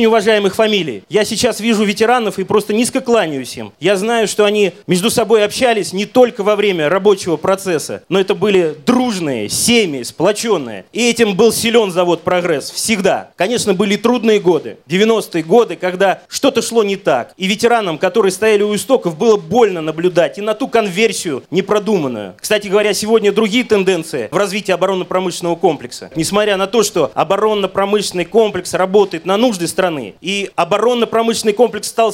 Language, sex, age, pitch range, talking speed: Russian, male, 30-49, 190-230 Hz, 160 wpm